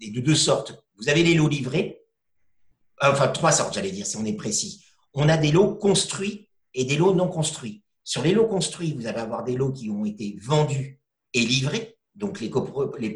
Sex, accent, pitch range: male, French, 130-180 Hz